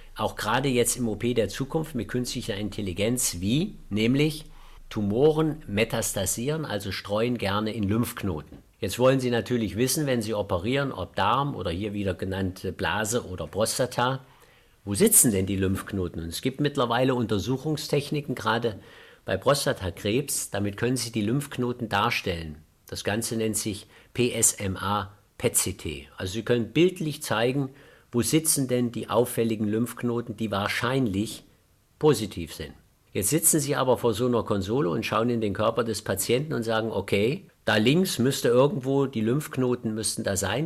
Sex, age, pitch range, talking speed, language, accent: male, 50-69, 105-130 Hz, 150 wpm, German, German